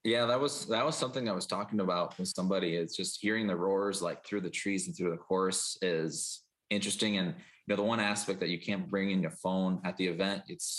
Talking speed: 245 wpm